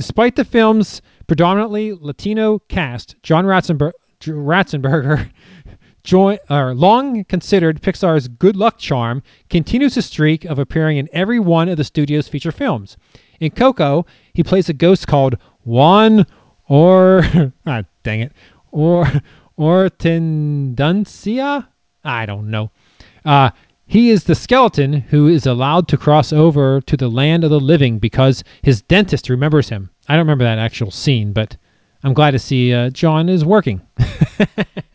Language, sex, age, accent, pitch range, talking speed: English, male, 30-49, American, 135-185 Hz, 150 wpm